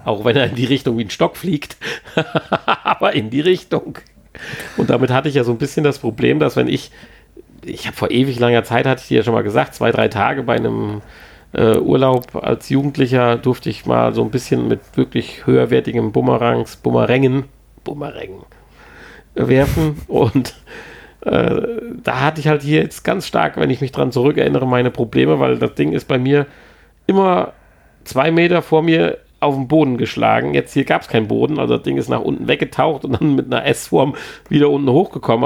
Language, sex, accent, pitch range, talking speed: German, male, German, 120-155 Hz, 195 wpm